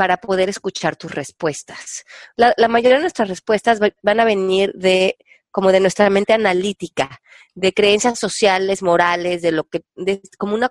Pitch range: 170-215 Hz